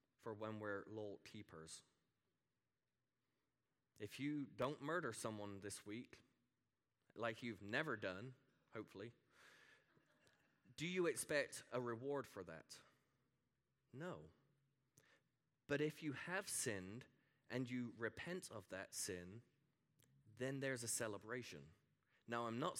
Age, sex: 20-39, male